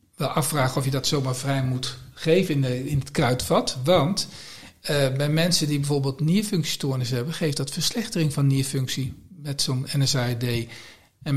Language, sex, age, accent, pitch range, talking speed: Dutch, male, 50-69, Dutch, 130-165 Hz, 165 wpm